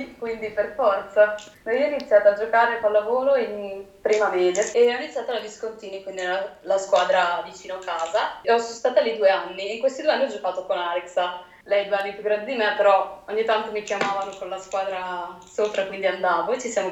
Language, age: Italian, 20-39